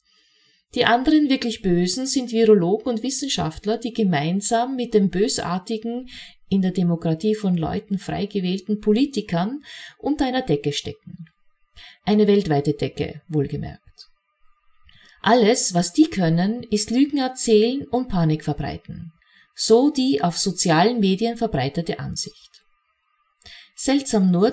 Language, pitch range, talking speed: German, 180-250 Hz, 115 wpm